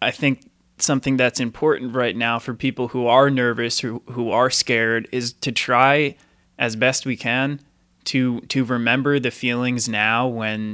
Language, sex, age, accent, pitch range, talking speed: English, male, 20-39, American, 115-130 Hz, 170 wpm